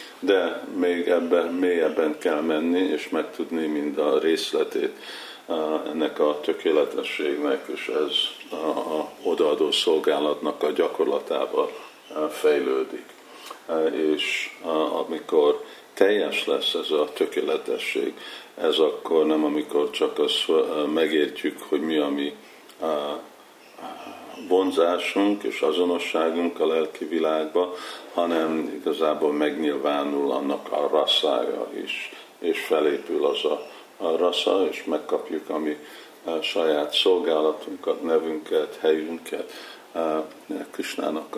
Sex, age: male, 50-69